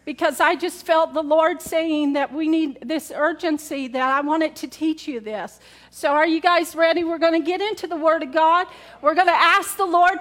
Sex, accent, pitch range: female, American, 310-370 Hz